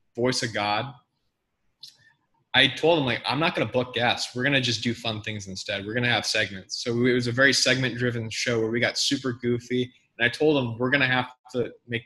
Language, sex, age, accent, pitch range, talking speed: English, male, 20-39, American, 120-140 Hz, 245 wpm